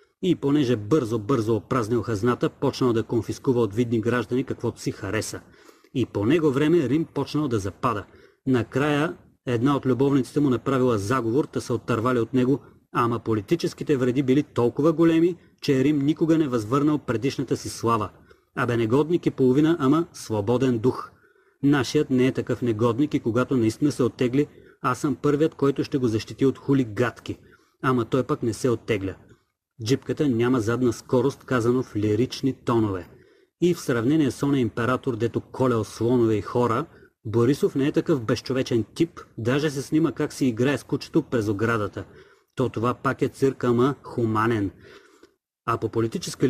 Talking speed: 160 wpm